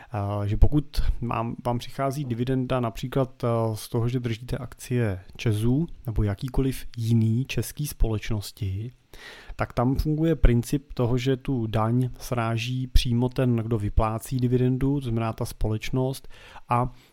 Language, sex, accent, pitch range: Czech, male, native, 110-125 Hz